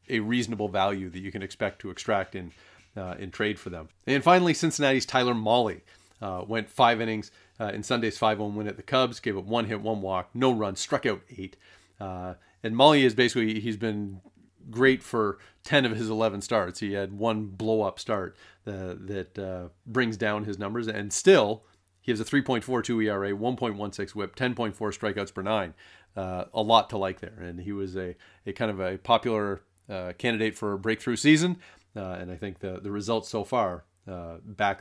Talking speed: 195 wpm